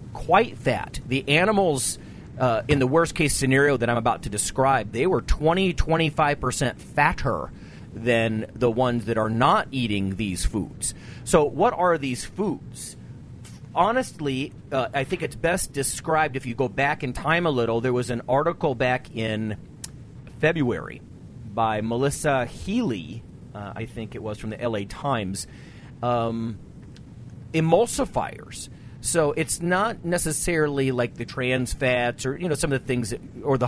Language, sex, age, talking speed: English, male, 40-59, 155 wpm